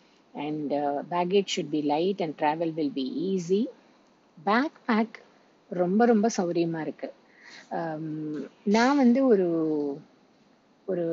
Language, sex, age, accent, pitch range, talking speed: Tamil, female, 50-69, native, 165-220 Hz, 115 wpm